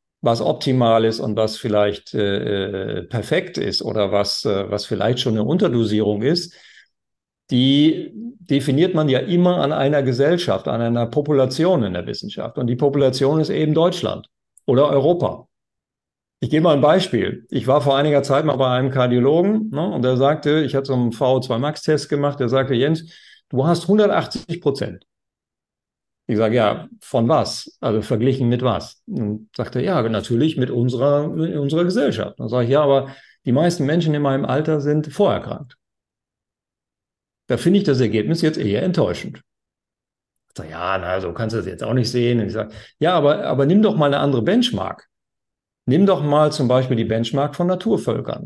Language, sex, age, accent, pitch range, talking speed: German, male, 50-69, German, 120-155 Hz, 170 wpm